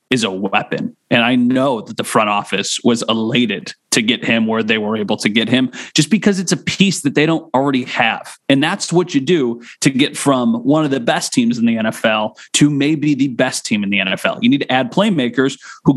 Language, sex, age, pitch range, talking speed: English, male, 30-49, 115-165 Hz, 235 wpm